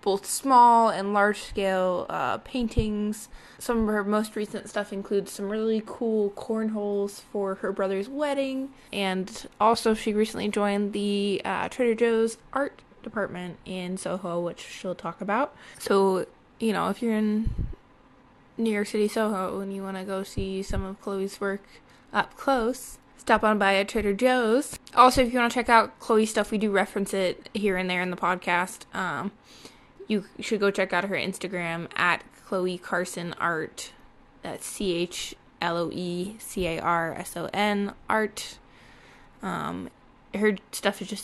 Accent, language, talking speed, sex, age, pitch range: American, English, 150 wpm, female, 20-39, 185-225 Hz